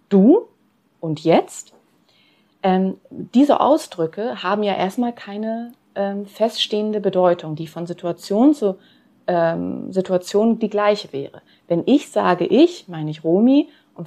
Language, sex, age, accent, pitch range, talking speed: German, female, 30-49, German, 175-230 Hz, 130 wpm